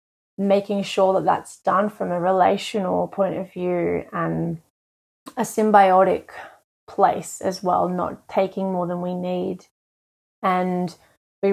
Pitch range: 185-215 Hz